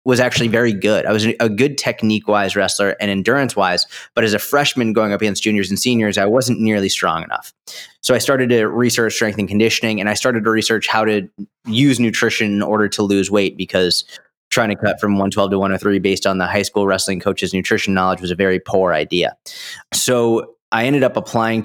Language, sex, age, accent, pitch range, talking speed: English, male, 20-39, American, 95-115 Hz, 215 wpm